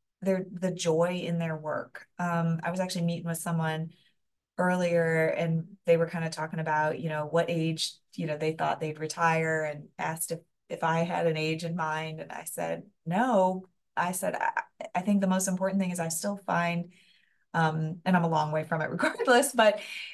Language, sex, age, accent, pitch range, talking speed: English, female, 20-39, American, 160-180 Hz, 205 wpm